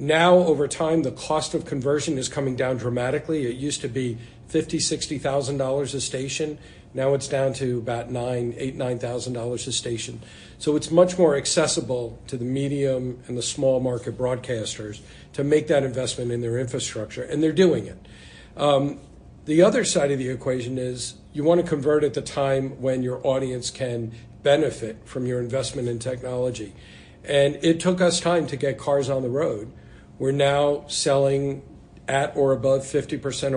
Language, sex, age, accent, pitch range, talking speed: English, male, 50-69, American, 125-145 Hz, 175 wpm